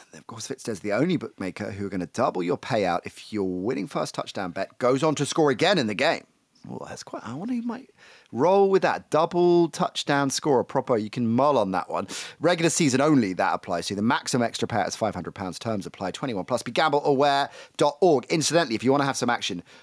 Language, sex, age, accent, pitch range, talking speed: English, male, 30-49, British, 105-145 Hz, 225 wpm